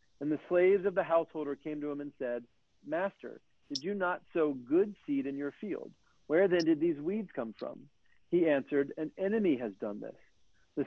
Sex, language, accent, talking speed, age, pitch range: male, English, American, 200 wpm, 50-69, 135-175 Hz